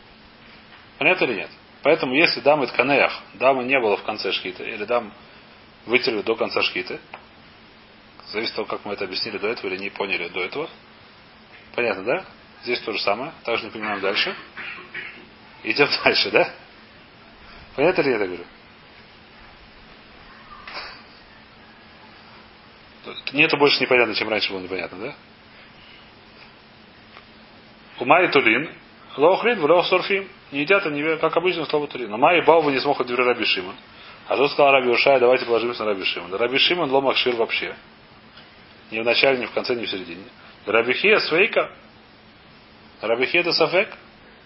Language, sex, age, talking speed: Russian, male, 30-49, 135 wpm